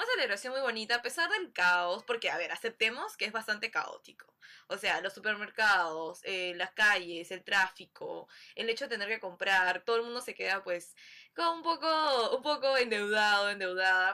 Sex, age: female, 10-29